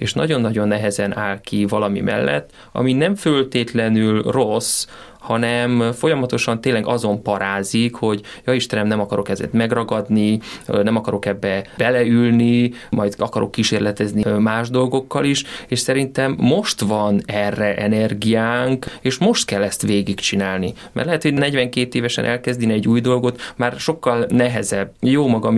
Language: Hungarian